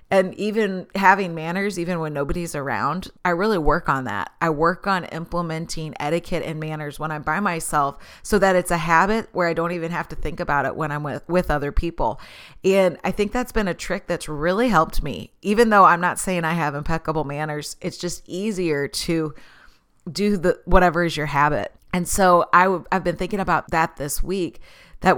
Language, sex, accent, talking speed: English, female, American, 205 wpm